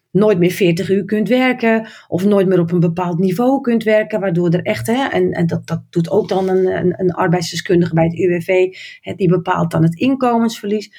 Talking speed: 210 wpm